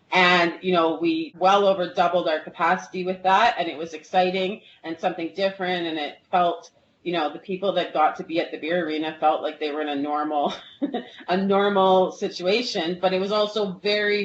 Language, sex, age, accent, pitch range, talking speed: English, female, 30-49, American, 160-190 Hz, 200 wpm